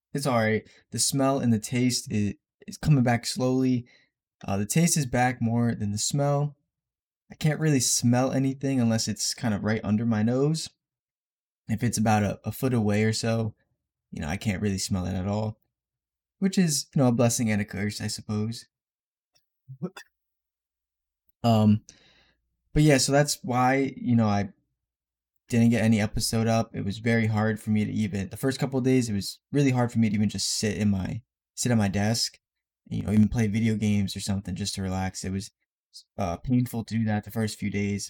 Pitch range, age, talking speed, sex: 100-130 Hz, 20-39, 205 wpm, male